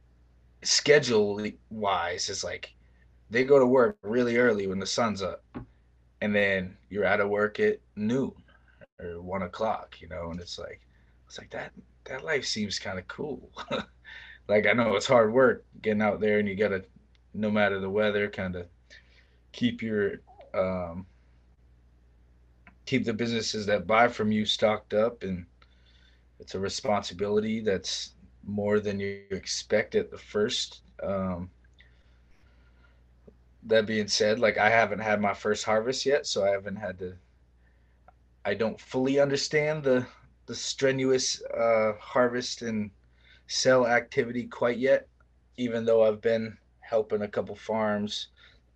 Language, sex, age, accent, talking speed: English, male, 20-39, American, 150 wpm